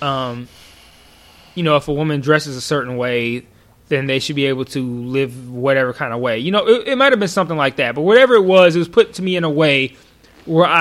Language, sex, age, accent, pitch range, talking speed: English, male, 20-39, American, 135-175 Hz, 245 wpm